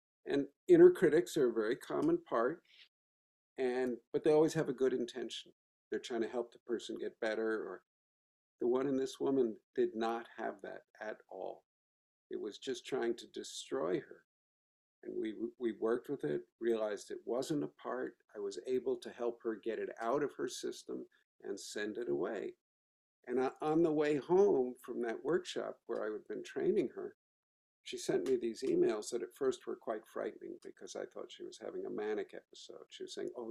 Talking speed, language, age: 195 wpm, English, 50-69